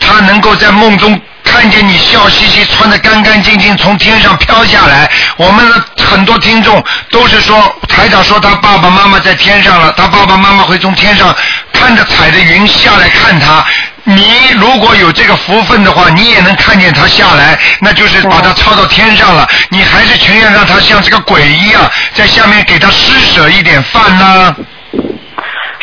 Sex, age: male, 50-69